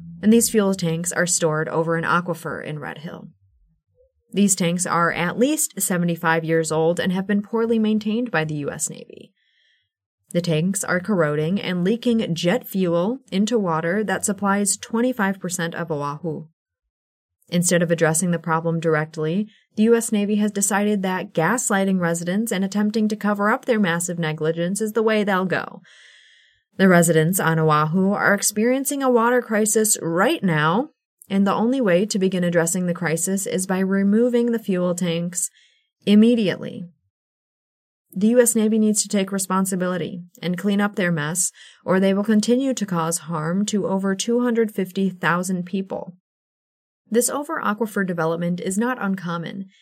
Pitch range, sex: 170-215 Hz, female